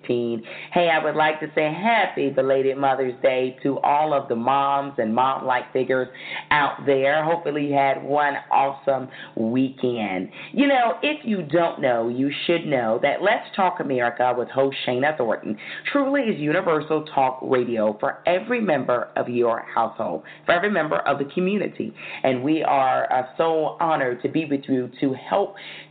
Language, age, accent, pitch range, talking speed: English, 40-59, American, 130-155 Hz, 170 wpm